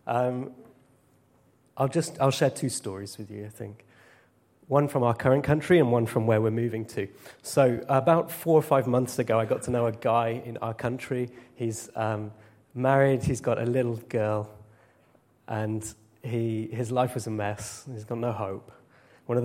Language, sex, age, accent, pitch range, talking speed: English, male, 30-49, British, 110-125 Hz, 185 wpm